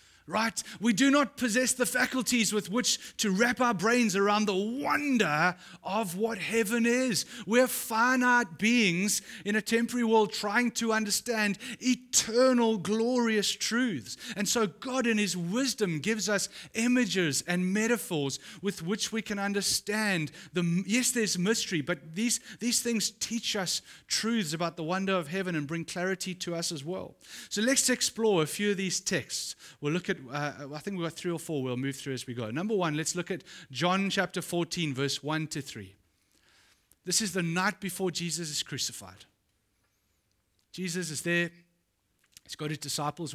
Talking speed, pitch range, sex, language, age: 170 wpm, 145-220 Hz, male, English, 30-49